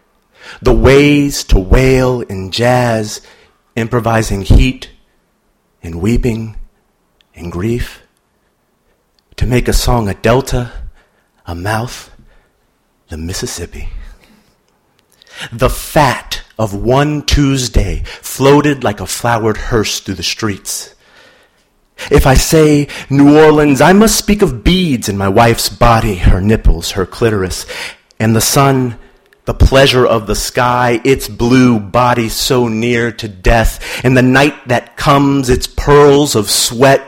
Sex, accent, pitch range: male, American, 95-125 Hz